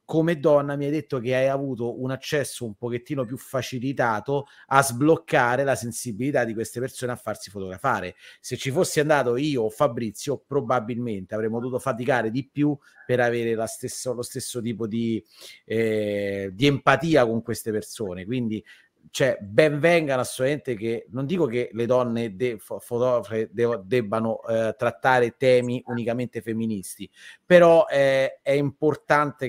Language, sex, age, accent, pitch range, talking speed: Italian, male, 30-49, native, 115-135 Hz, 140 wpm